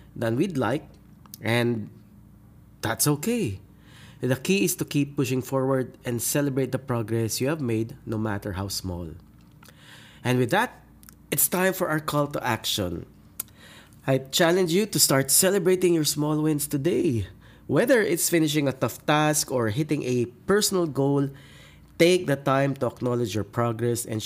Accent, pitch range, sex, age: Filipino, 120-165 Hz, male, 20-39